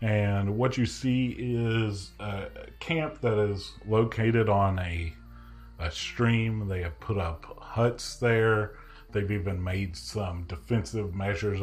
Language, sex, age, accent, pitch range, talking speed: English, male, 40-59, American, 80-100 Hz, 135 wpm